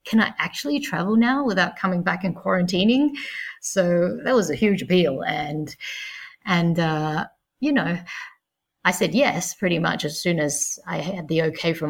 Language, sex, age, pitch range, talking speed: English, female, 30-49, 165-220 Hz, 170 wpm